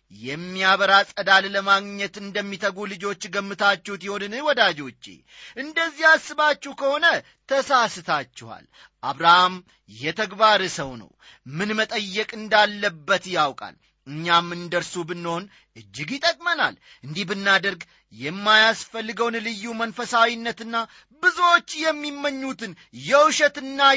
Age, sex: 30-49, male